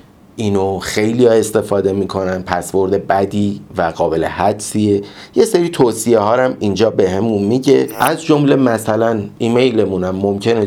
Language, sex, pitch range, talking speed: Persian, male, 95-110 Hz, 125 wpm